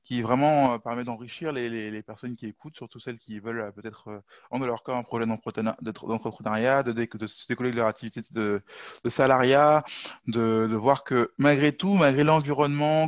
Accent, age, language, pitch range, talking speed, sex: French, 20-39, French, 120-150 Hz, 200 wpm, male